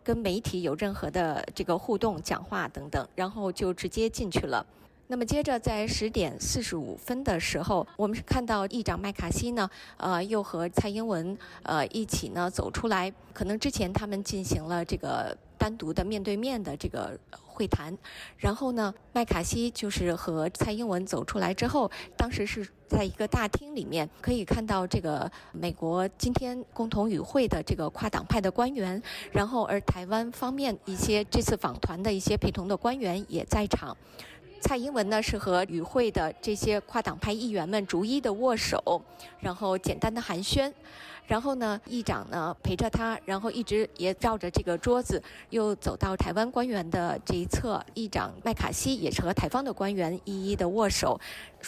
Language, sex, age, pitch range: Chinese, female, 20-39, 185-230 Hz